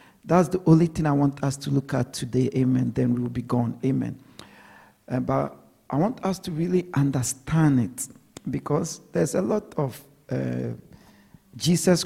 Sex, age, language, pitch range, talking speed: male, 50-69, English, 130-170 Hz, 170 wpm